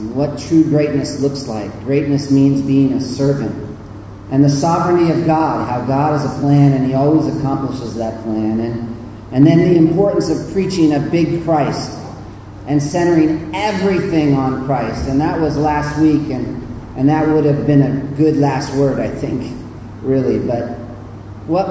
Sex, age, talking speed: male, 40-59, 170 wpm